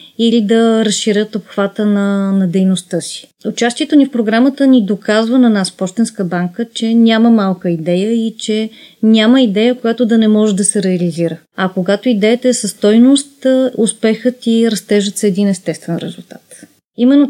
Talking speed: 165 wpm